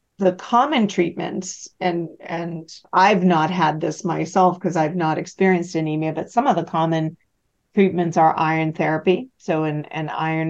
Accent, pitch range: American, 160-185 Hz